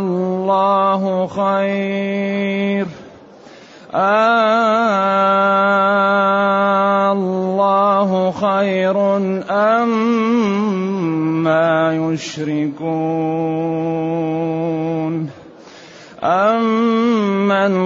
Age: 30-49